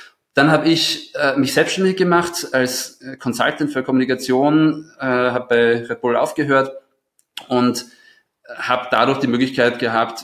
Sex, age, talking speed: male, 20-39, 140 wpm